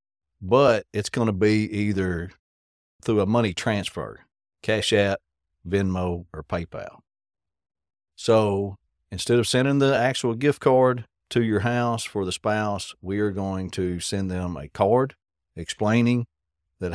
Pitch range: 85-110 Hz